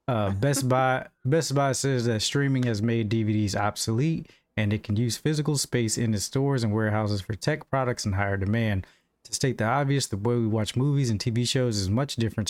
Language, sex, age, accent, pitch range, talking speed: English, male, 20-39, American, 105-130 Hz, 210 wpm